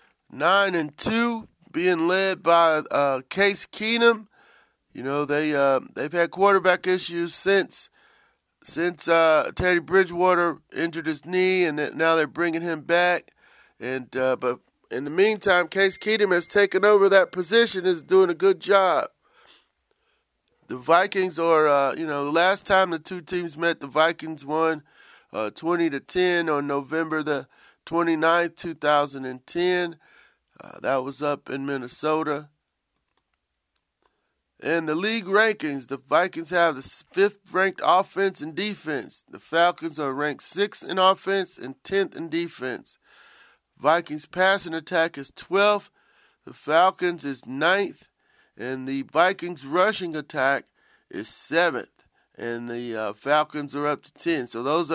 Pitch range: 150-190 Hz